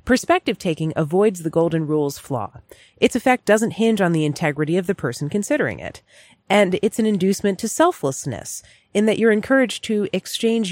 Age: 30-49